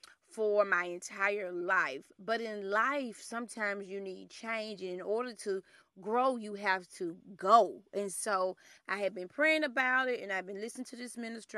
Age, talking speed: 20-39, 175 wpm